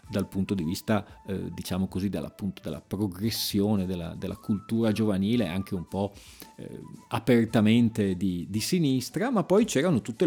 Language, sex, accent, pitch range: Italian, male, native, 100-155 Hz